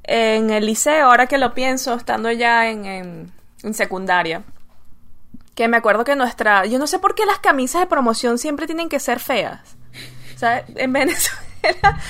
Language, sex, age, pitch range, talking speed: English, female, 20-39, 210-275 Hz, 170 wpm